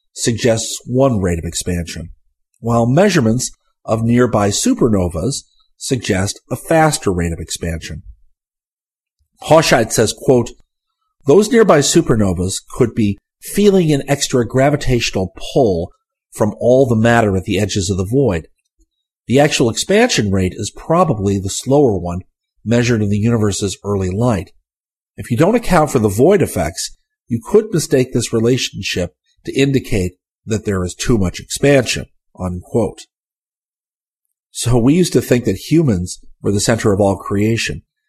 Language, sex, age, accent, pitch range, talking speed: English, male, 50-69, American, 100-130 Hz, 140 wpm